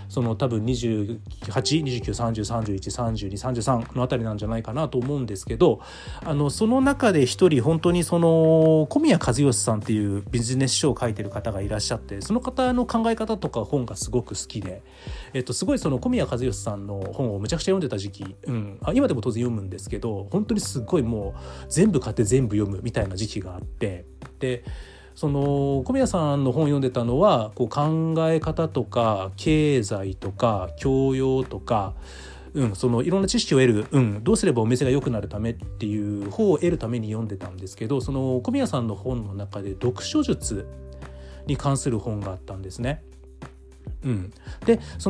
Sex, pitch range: male, 100-150 Hz